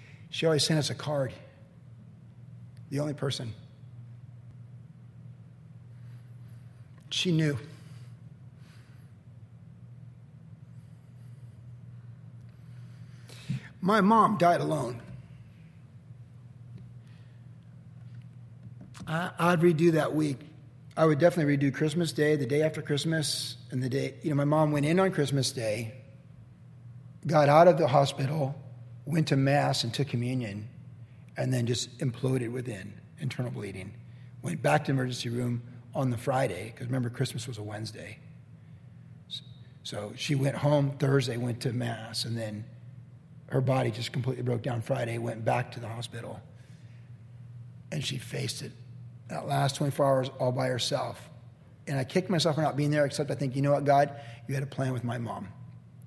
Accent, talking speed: American, 140 wpm